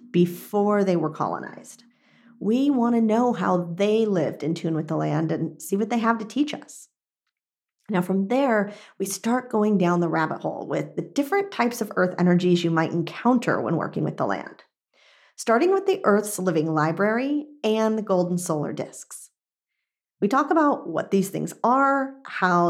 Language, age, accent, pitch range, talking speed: English, 40-59, American, 175-245 Hz, 180 wpm